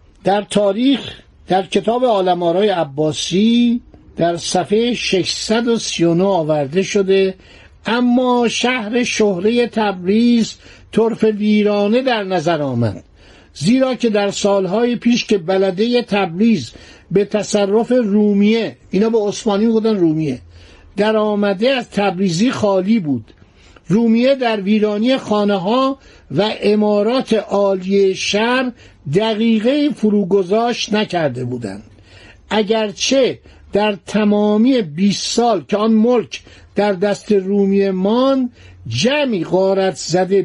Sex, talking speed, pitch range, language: male, 105 wpm, 185-230 Hz, Persian